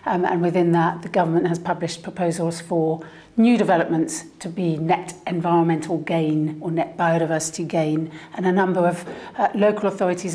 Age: 50-69